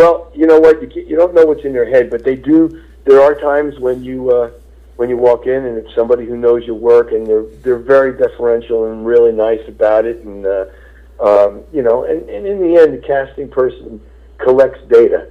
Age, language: 50-69, English